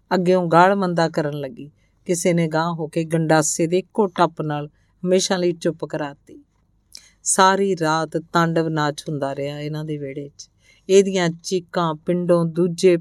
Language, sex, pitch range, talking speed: Punjabi, female, 145-190 Hz, 150 wpm